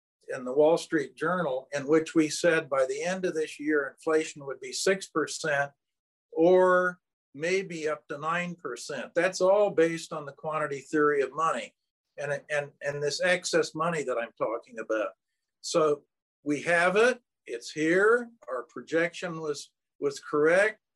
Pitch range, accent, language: 155-200 Hz, American, English